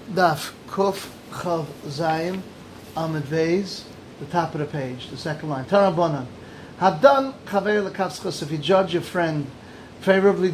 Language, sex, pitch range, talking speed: English, male, 155-190 Hz, 125 wpm